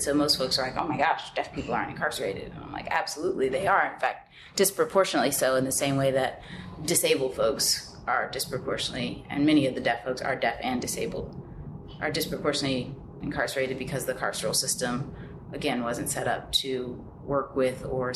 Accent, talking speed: American, 185 wpm